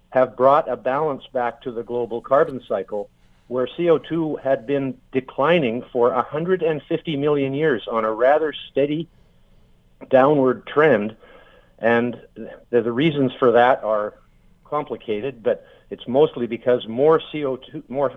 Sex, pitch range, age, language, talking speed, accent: male, 115-140 Hz, 50-69, English, 130 wpm, American